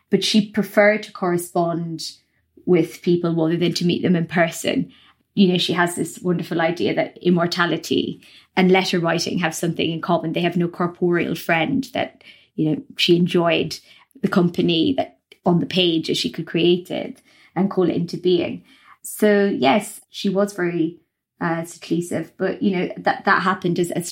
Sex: female